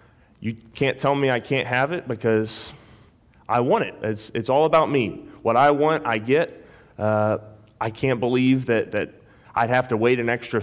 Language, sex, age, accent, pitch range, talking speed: English, male, 30-49, American, 110-130 Hz, 190 wpm